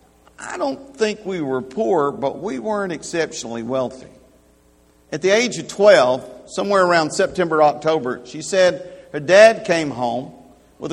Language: English